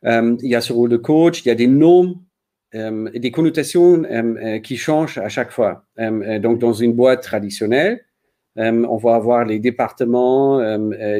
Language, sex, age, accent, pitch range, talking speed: French, male, 50-69, German, 115-145 Hz, 190 wpm